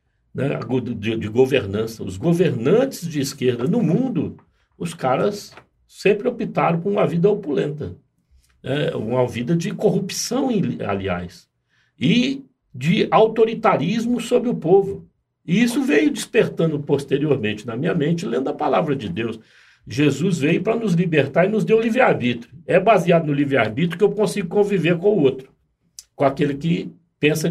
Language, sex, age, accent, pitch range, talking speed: Portuguese, male, 60-79, Brazilian, 125-185 Hz, 145 wpm